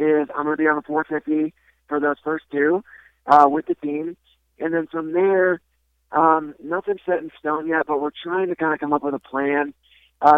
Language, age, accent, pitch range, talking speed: English, 40-59, American, 140-160 Hz, 220 wpm